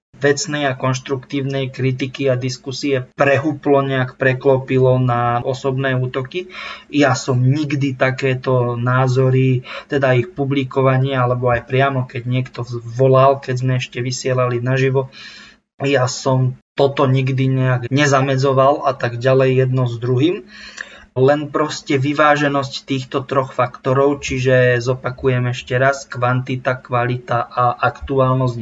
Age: 20-39